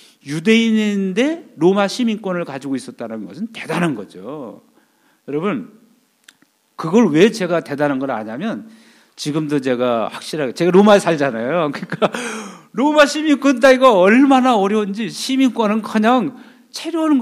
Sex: male